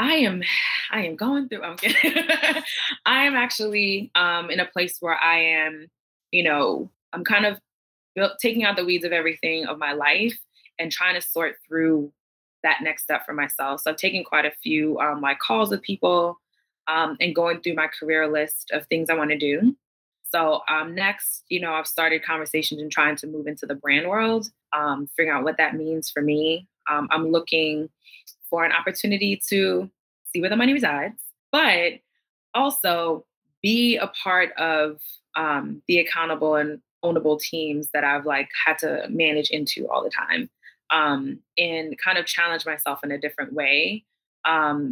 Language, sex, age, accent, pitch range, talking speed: English, female, 20-39, American, 150-190 Hz, 185 wpm